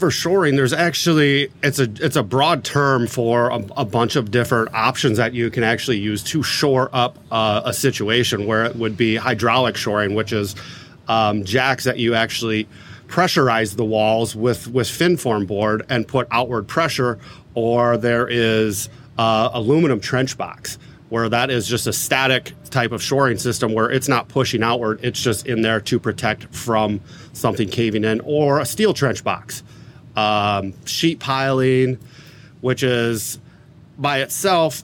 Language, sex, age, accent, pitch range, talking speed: English, male, 30-49, American, 115-140 Hz, 165 wpm